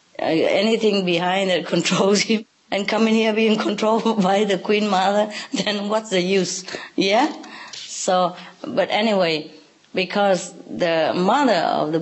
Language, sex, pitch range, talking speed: English, female, 150-185 Hz, 140 wpm